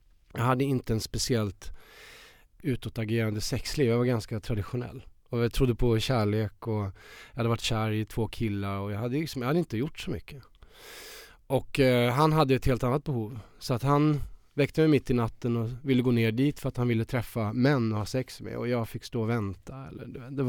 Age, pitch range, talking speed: 20-39, 110-130 Hz, 210 wpm